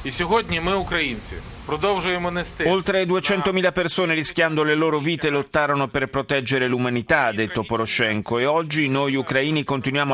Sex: male